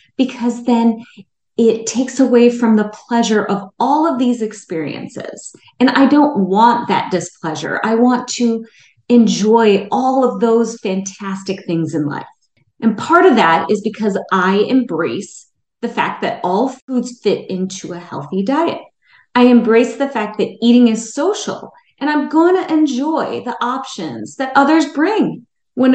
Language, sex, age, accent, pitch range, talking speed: English, female, 30-49, American, 195-265 Hz, 155 wpm